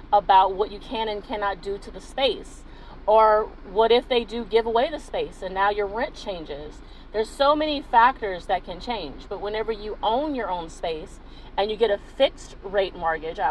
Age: 40-59